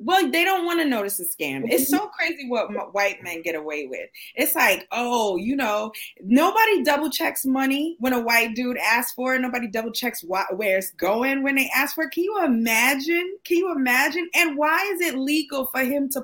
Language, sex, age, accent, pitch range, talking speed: English, female, 20-39, American, 230-315 Hz, 220 wpm